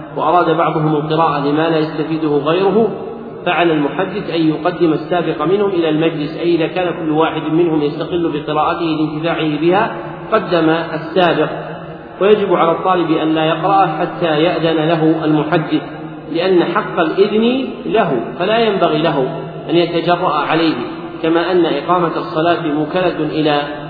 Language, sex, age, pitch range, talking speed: Arabic, male, 40-59, 155-180 Hz, 135 wpm